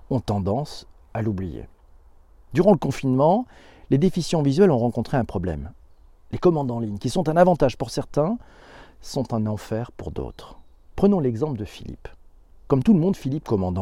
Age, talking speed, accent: 40-59, 170 wpm, French